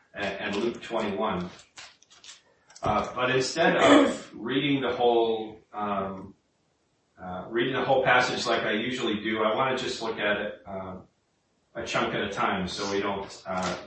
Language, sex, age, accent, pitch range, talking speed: English, male, 30-49, American, 100-130 Hz, 160 wpm